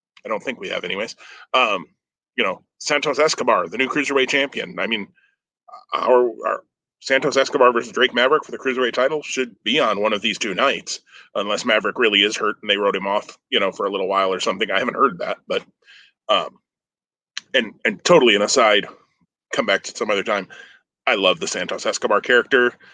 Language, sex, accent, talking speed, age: English, male, American, 200 wpm, 30-49